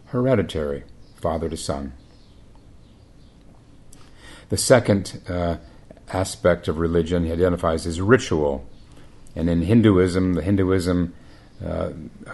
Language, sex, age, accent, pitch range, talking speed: English, male, 50-69, American, 85-105 Hz, 95 wpm